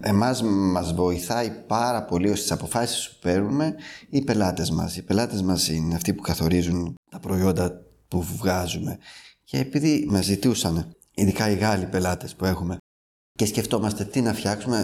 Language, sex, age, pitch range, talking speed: Greek, male, 20-39, 90-110 Hz, 155 wpm